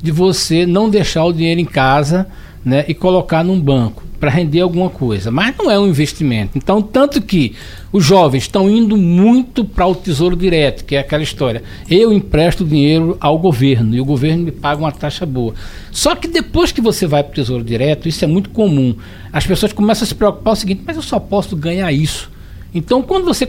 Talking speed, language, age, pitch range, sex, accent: 210 wpm, Portuguese, 60-79, 145-210 Hz, male, Brazilian